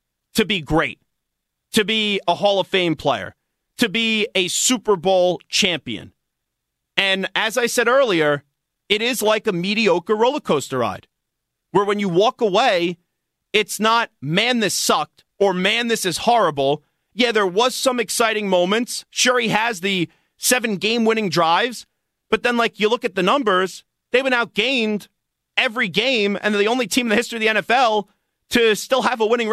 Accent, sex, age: American, male, 30-49